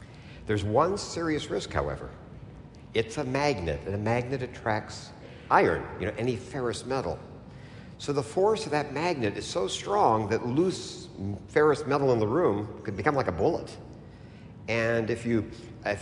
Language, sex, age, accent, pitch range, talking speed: English, male, 50-69, American, 95-135 Hz, 160 wpm